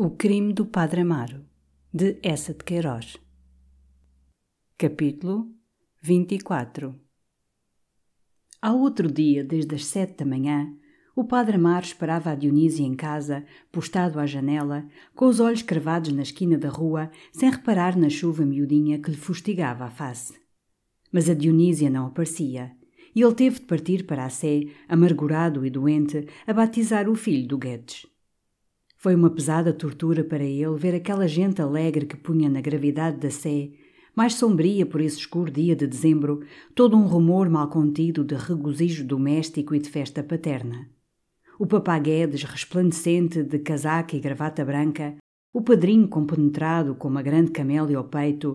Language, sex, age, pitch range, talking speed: Portuguese, female, 50-69, 145-175 Hz, 150 wpm